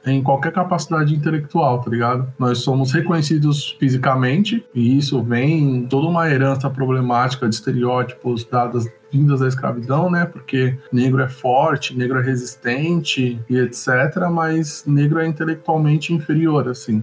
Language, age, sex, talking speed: Portuguese, 20-39, male, 140 wpm